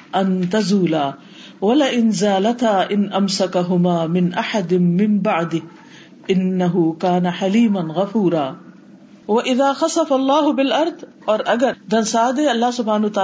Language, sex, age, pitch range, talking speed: Urdu, female, 50-69, 185-250 Hz, 45 wpm